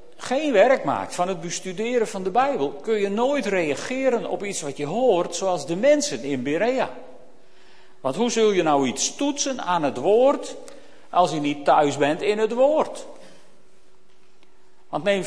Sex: male